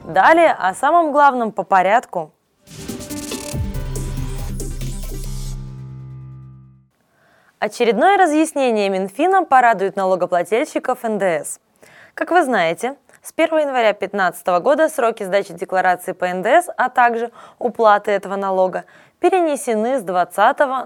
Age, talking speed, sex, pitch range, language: 20-39, 95 wpm, female, 185-250 Hz, Russian